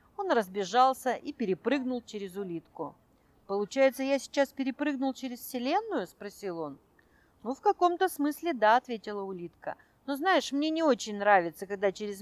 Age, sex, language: 40-59, female, Russian